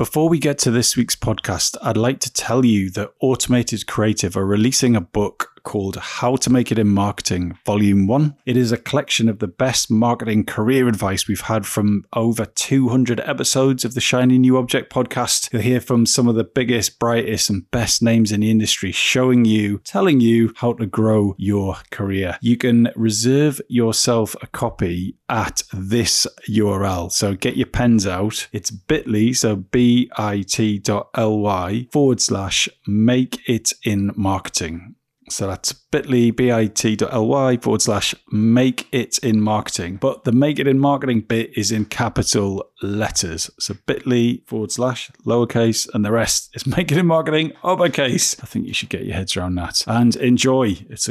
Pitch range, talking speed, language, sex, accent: 105-125 Hz, 170 wpm, English, male, British